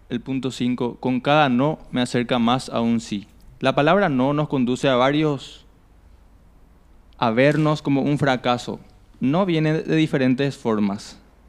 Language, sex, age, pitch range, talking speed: Spanish, male, 20-39, 115-145 Hz, 150 wpm